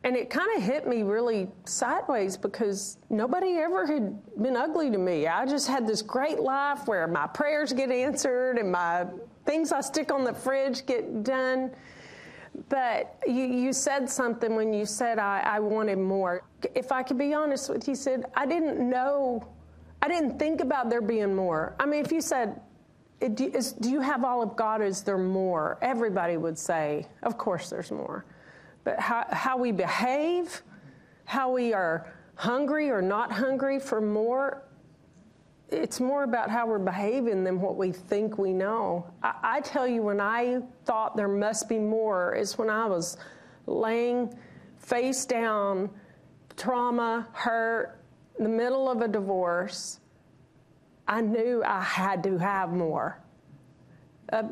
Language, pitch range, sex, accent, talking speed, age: English, 200-260 Hz, female, American, 165 wpm, 40-59